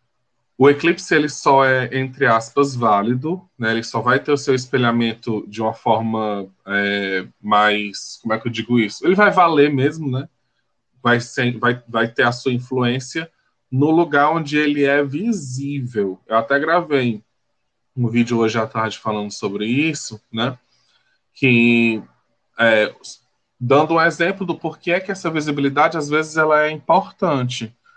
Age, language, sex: 20-39, Portuguese, male